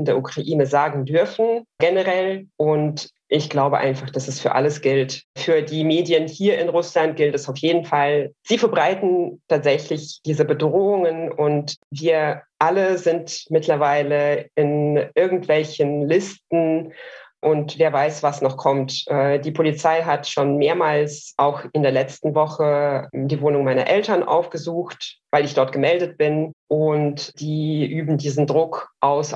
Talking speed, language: 145 wpm, German